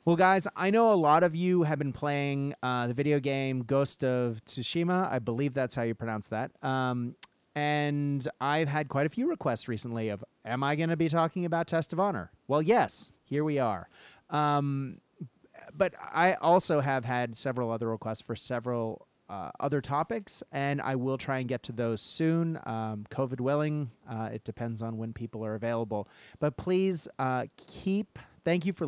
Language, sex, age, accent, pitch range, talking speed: English, male, 30-49, American, 125-155 Hz, 190 wpm